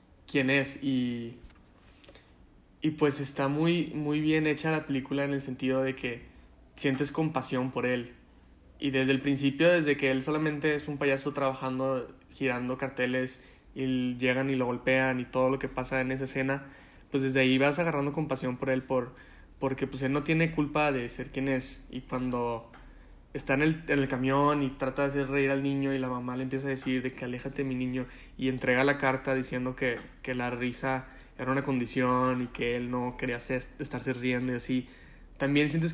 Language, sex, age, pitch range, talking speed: Spanish, male, 20-39, 125-140 Hz, 195 wpm